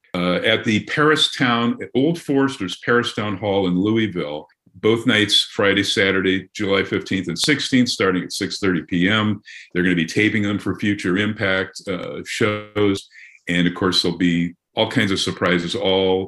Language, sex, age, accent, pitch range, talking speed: English, male, 50-69, American, 90-120 Hz, 165 wpm